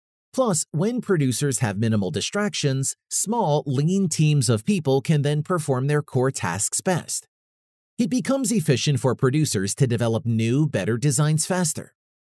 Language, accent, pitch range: English, American, 125-170 Hz